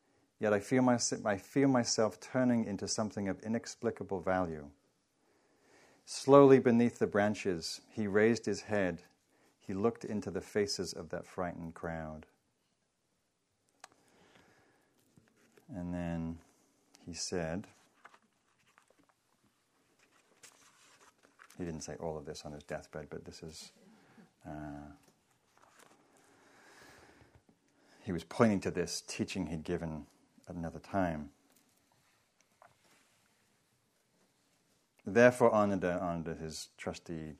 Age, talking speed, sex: 40-59, 100 wpm, male